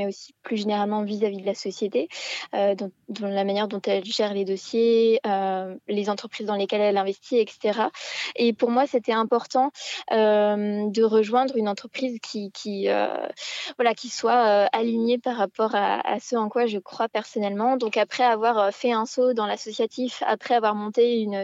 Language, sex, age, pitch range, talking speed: French, female, 20-39, 200-235 Hz, 180 wpm